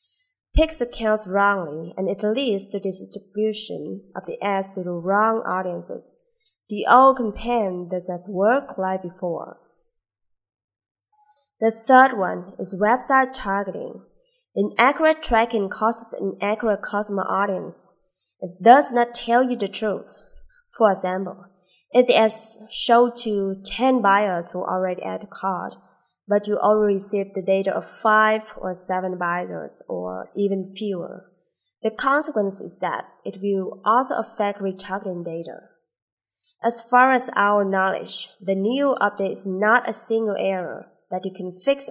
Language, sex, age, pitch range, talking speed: English, female, 20-39, 190-230 Hz, 135 wpm